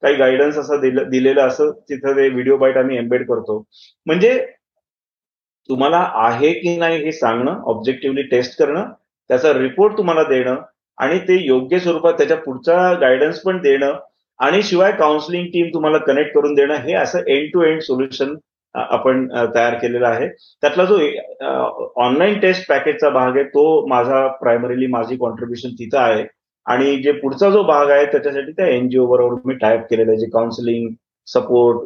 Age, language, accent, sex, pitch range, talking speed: 30-49, Marathi, native, male, 130-175 Hz, 160 wpm